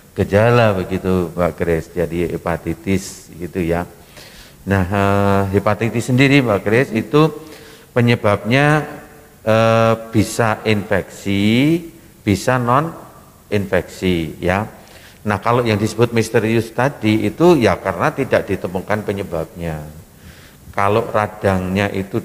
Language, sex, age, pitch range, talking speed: Indonesian, male, 50-69, 95-115 Hz, 100 wpm